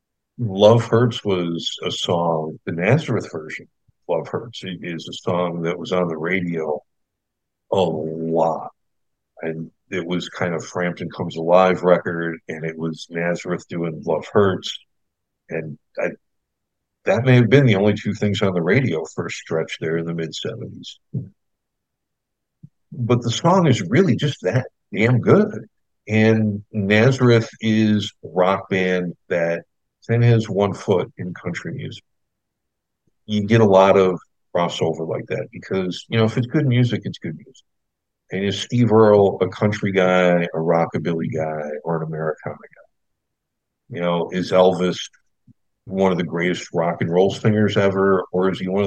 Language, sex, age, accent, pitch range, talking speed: English, male, 60-79, American, 85-110 Hz, 155 wpm